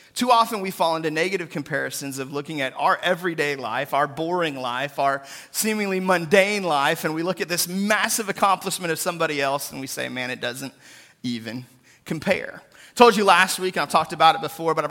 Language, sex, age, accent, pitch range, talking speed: English, male, 30-49, American, 150-190 Hz, 200 wpm